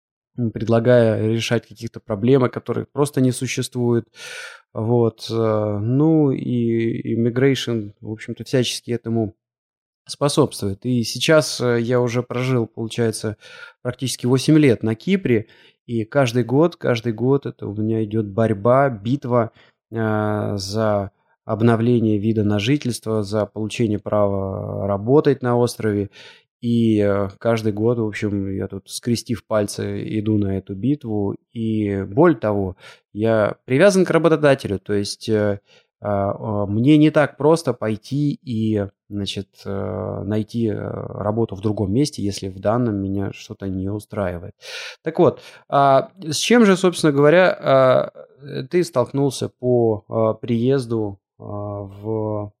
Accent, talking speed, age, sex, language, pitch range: native, 115 wpm, 20-39, male, Russian, 105-125 Hz